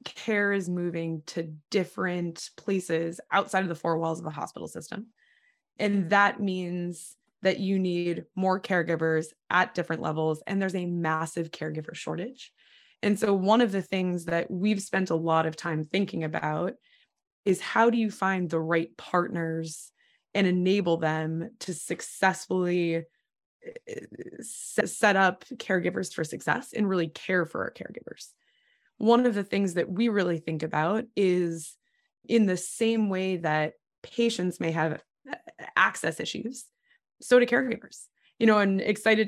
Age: 20-39